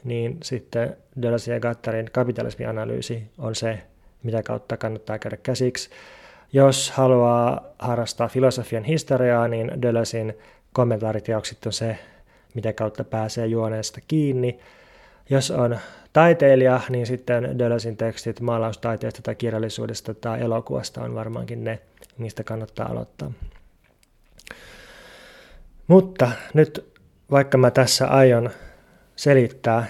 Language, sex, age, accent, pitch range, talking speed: Finnish, male, 20-39, native, 115-130 Hz, 105 wpm